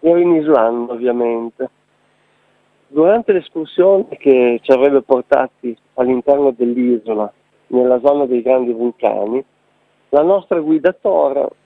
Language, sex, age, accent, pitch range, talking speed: Italian, male, 50-69, native, 125-165 Hz, 110 wpm